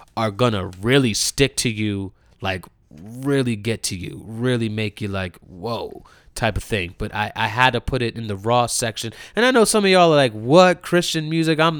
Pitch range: 105-130 Hz